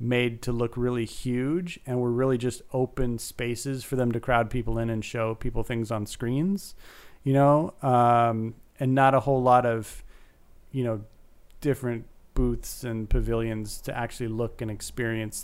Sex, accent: male, American